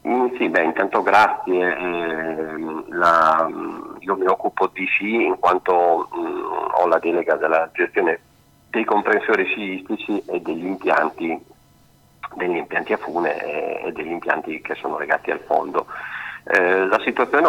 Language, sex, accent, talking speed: Italian, male, native, 135 wpm